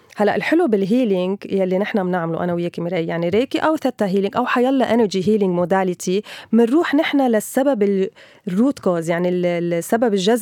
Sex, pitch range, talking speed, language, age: female, 190-235 Hz, 155 wpm, Arabic, 20-39